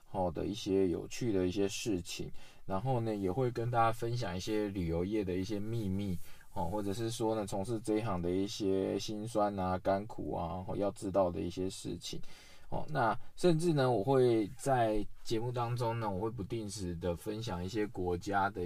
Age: 20-39